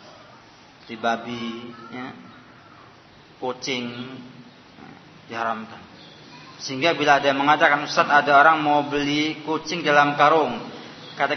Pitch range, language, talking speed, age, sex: 150-215 Hz, Malay, 100 wpm, 40-59, male